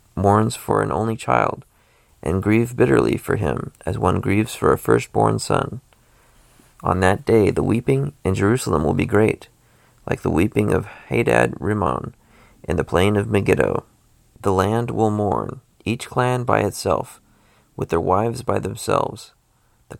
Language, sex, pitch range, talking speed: English, male, 100-125 Hz, 155 wpm